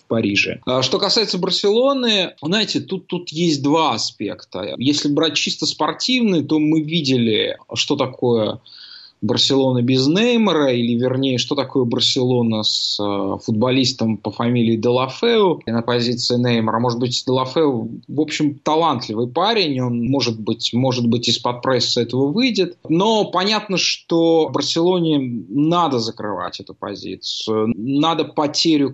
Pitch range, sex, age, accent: 115-155 Hz, male, 20-39, native